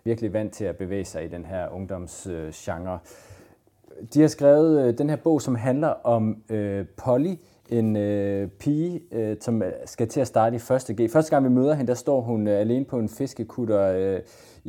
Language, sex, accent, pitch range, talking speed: Danish, male, native, 100-125 Hz, 190 wpm